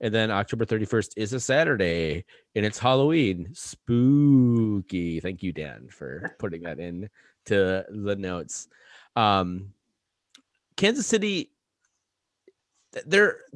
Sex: male